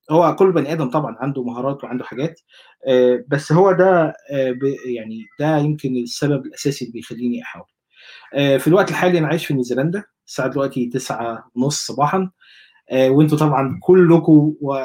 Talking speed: 135 wpm